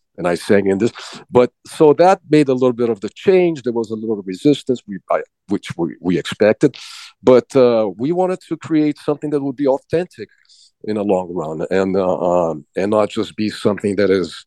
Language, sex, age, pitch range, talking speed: English, male, 50-69, 100-140 Hz, 210 wpm